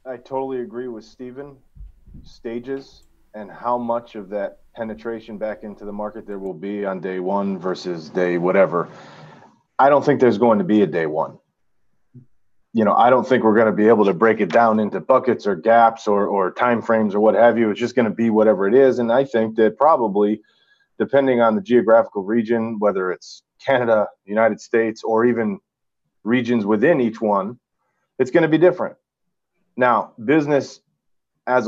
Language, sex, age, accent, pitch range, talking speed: English, male, 30-49, American, 110-130 Hz, 190 wpm